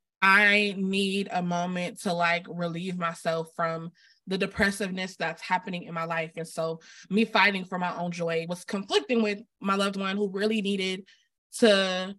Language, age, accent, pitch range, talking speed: English, 20-39, American, 165-210 Hz, 165 wpm